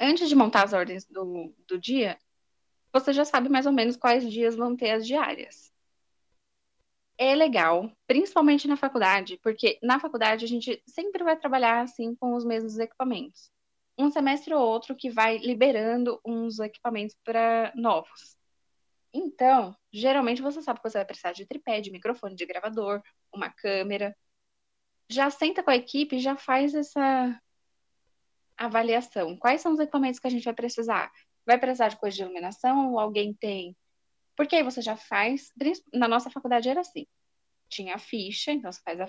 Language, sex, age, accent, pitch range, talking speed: Portuguese, female, 10-29, Brazilian, 200-270 Hz, 170 wpm